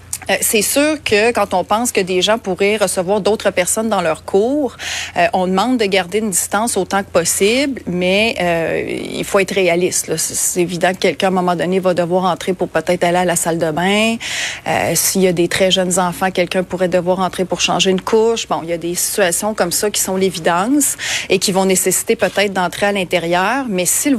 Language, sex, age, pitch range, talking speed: French, female, 30-49, 175-200 Hz, 225 wpm